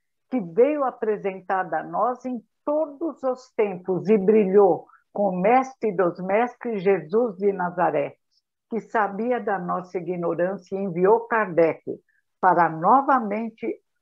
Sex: female